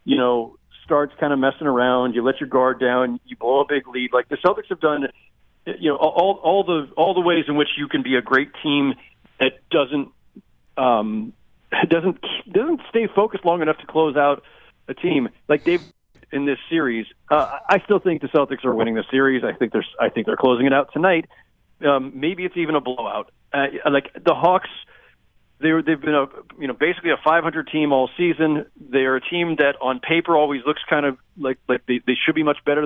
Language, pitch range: English, 130-160 Hz